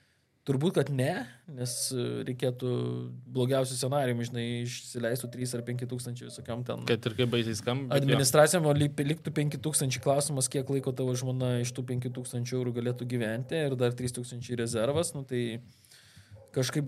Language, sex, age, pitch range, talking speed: English, male, 20-39, 120-135 Hz, 160 wpm